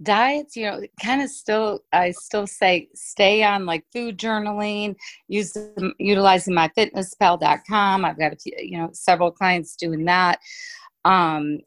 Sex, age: female, 40-59